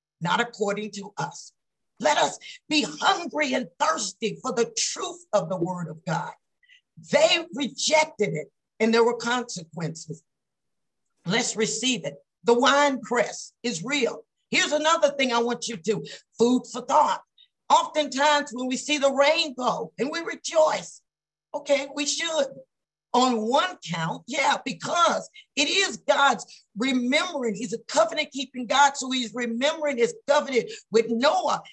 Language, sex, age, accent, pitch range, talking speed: English, female, 50-69, American, 215-290 Hz, 145 wpm